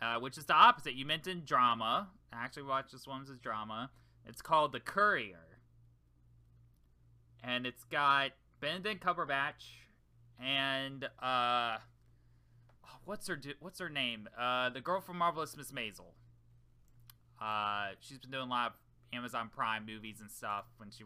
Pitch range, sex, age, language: 115-135 Hz, male, 20-39, English